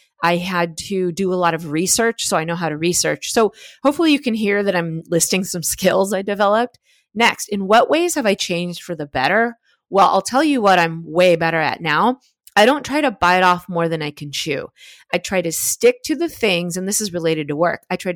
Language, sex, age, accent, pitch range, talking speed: English, female, 30-49, American, 165-225 Hz, 240 wpm